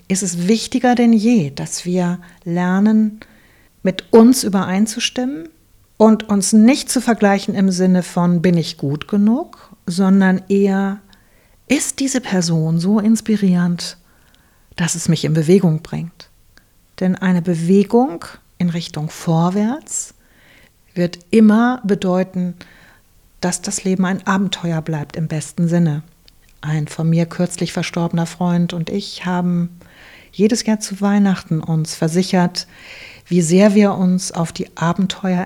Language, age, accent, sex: German, 50-69, German, female